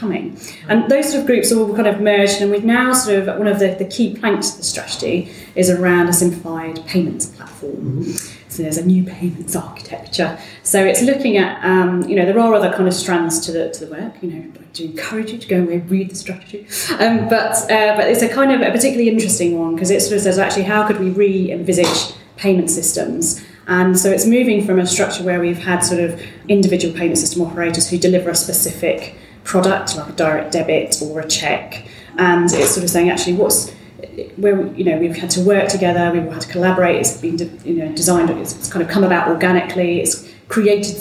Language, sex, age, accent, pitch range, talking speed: English, female, 20-39, British, 170-200 Hz, 225 wpm